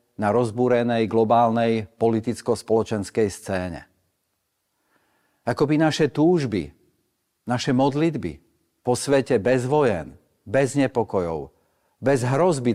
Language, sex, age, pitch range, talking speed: Slovak, male, 50-69, 100-130 Hz, 85 wpm